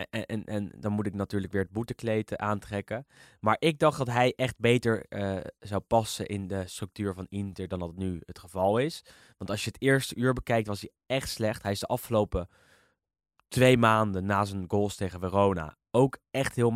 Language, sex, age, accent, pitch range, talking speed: Dutch, male, 20-39, Dutch, 100-125 Hz, 205 wpm